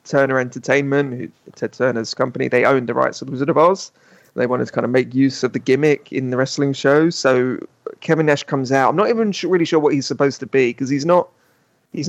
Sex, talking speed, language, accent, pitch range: male, 245 wpm, English, British, 125-150 Hz